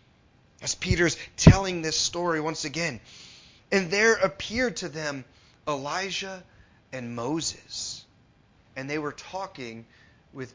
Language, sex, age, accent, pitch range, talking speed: English, male, 30-49, American, 150-245 Hz, 115 wpm